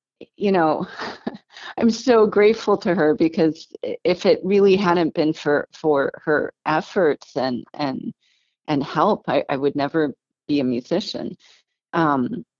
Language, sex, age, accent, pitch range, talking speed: English, female, 40-59, American, 150-200 Hz, 140 wpm